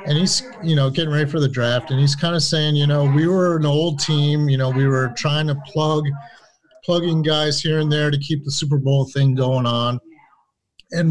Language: English